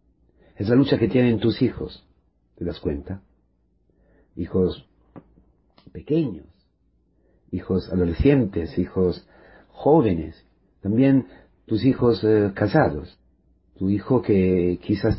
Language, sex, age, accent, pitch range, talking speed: Spanish, male, 40-59, Mexican, 85-115 Hz, 100 wpm